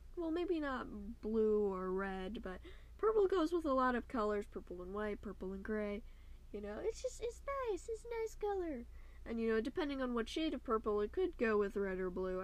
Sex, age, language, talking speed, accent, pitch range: female, 10-29, English, 220 wpm, American, 190-265 Hz